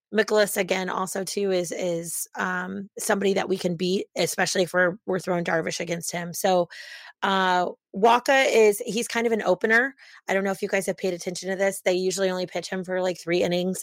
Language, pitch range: English, 175-210 Hz